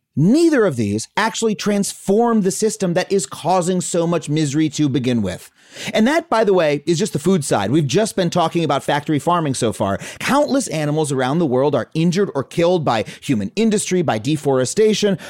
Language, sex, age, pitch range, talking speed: English, male, 30-49, 140-215 Hz, 190 wpm